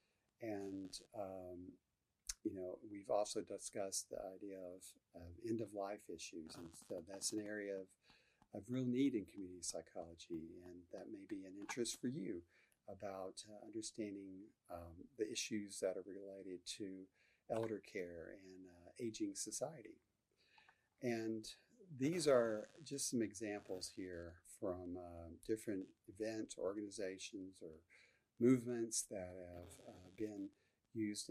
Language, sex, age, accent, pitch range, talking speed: English, male, 50-69, American, 90-115 Hz, 130 wpm